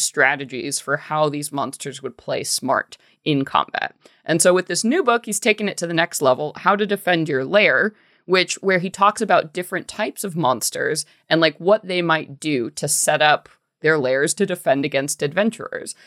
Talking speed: 195 wpm